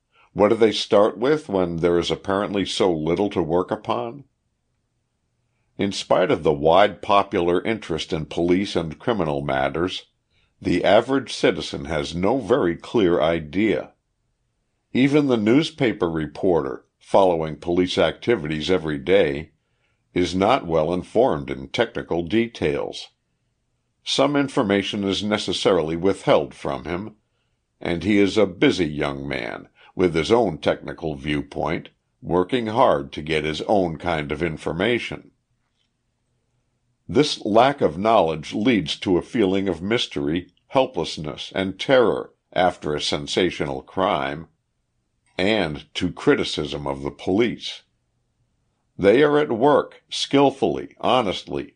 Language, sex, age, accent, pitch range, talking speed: English, male, 60-79, American, 80-115 Hz, 125 wpm